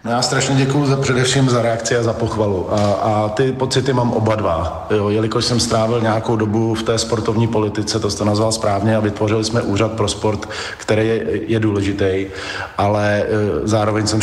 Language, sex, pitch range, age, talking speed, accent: Czech, male, 100-110 Hz, 40-59, 190 wpm, native